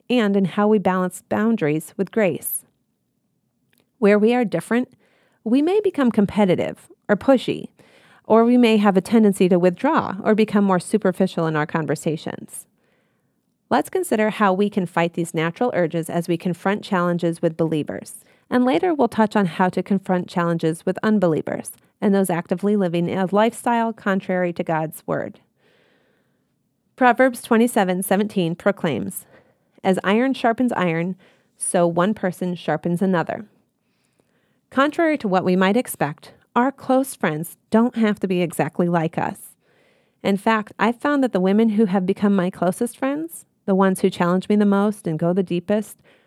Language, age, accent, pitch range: English, 40-59, American, 175-225 Hz